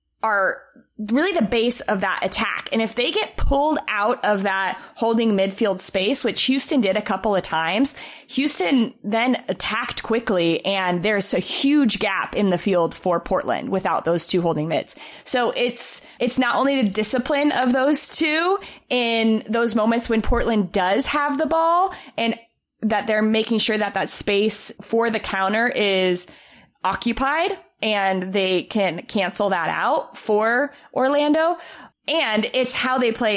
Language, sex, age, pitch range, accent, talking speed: English, female, 20-39, 195-250 Hz, American, 160 wpm